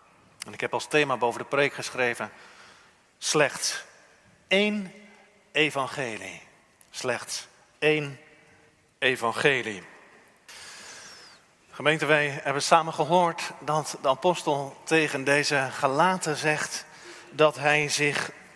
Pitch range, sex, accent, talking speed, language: 135-165 Hz, male, Dutch, 95 wpm, Dutch